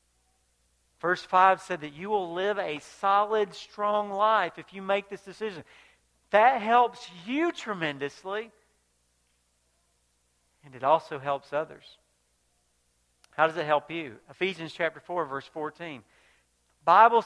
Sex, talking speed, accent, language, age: male, 125 wpm, American, English, 50-69